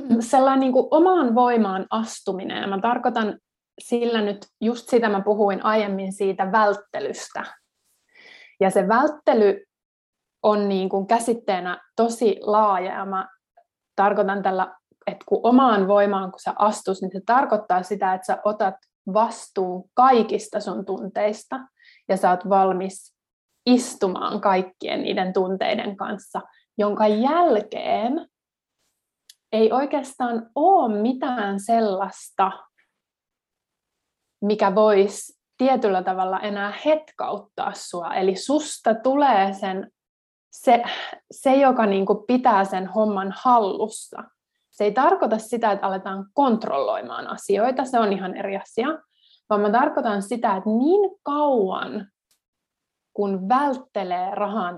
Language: Finnish